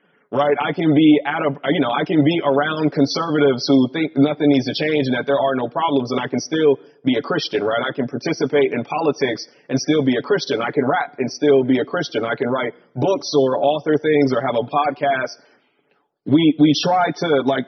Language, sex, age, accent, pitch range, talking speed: English, male, 30-49, American, 135-155 Hz, 225 wpm